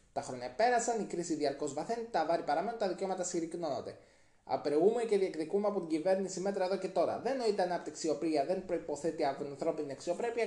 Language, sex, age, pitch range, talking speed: Greek, male, 20-39, 155-215 Hz, 185 wpm